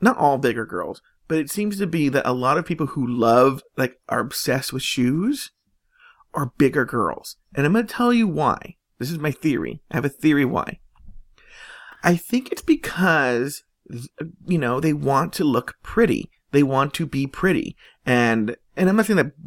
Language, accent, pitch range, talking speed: English, American, 130-180 Hz, 190 wpm